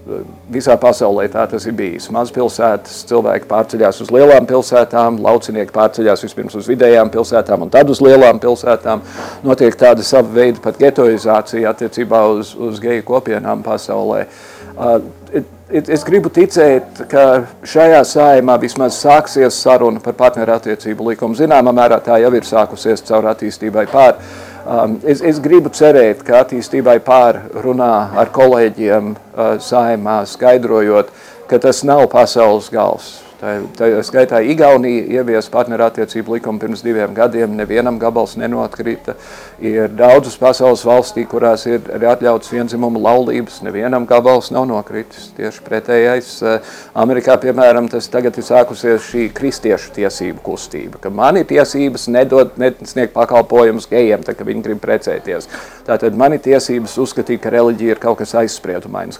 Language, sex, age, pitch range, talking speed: English, male, 50-69, 115-130 Hz, 140 wpm